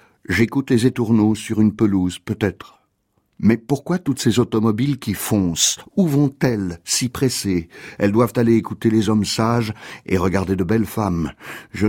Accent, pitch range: French, 100-125 Hz